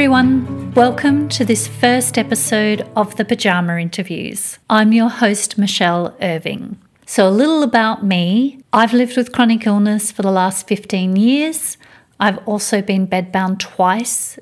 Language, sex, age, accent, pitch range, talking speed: English, female, 40-59, Australian, 185-220 Hz, 145 wpm